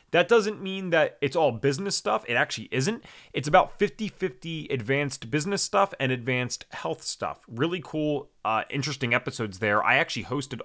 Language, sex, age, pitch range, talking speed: English, male, 30-49, 110-155 Hz, 170 wpm